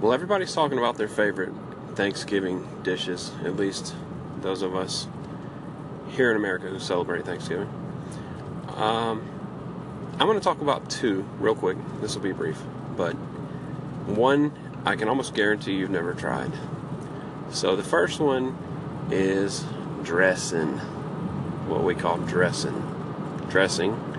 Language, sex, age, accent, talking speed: English, male, 30-49, American, 130 wpm